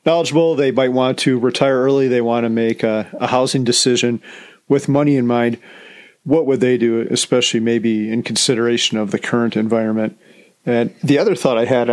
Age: 40-59